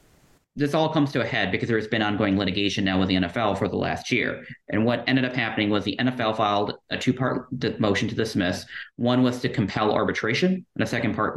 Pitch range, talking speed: 95-125 Hz, 225 wpm